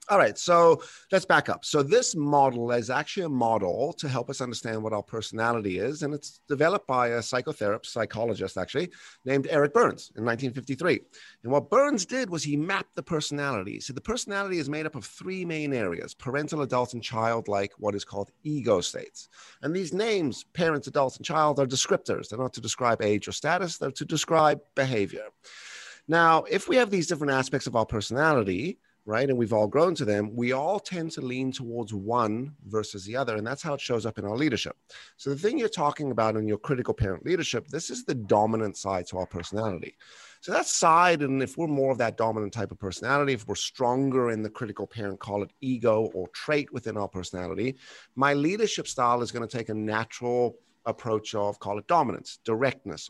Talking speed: 205 wpm